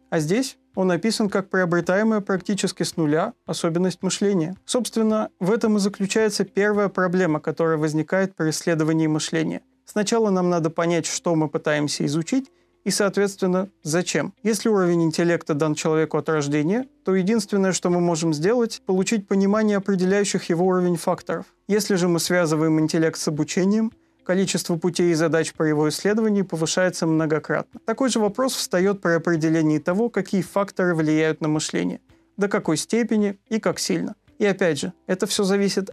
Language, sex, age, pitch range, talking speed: Russian, male, 30-49, 165-205 Hz, 155 wpm